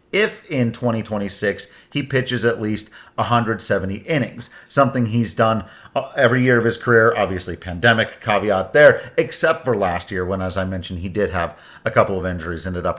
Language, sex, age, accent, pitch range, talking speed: English, male, 40-59, American, 100-130 Hz, 175 wpm